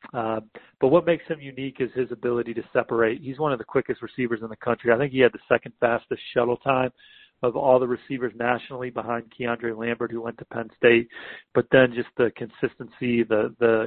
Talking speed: 210 wpm